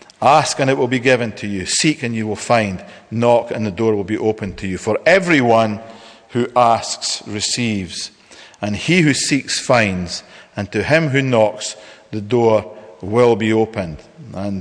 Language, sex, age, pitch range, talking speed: English, male, 40-59, 105-130 Hz, 175 wpm